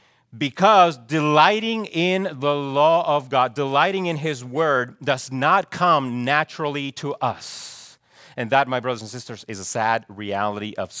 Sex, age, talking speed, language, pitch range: male, 40-59, 155 wpm, English, 145-185 Hz